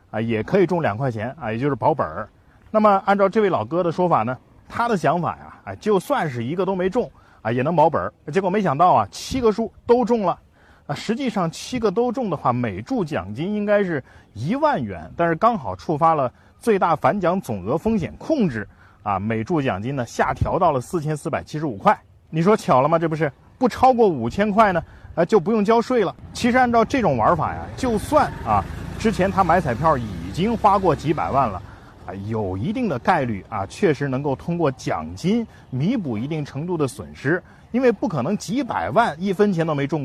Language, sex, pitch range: Chinese, male, 125-205 Hz